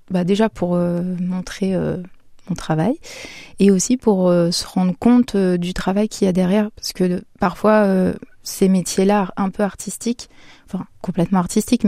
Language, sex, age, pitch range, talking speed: French, female, 20-39, 180-200 Hz, 170 wpm